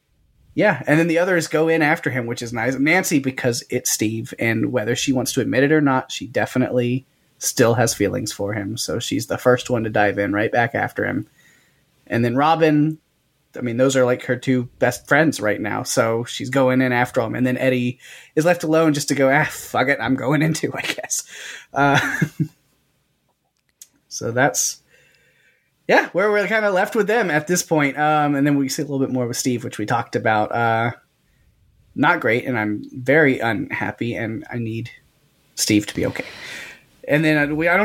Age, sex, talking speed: 20-39, male, 205 wpm